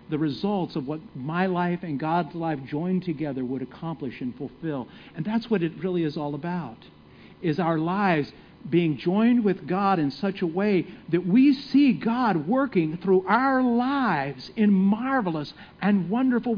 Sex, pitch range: male, 185-280 Hz